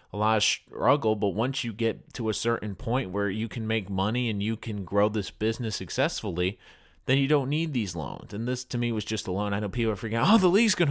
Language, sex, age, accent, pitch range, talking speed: English, male, 30-49, American, 105-130 Hz, 265 wpm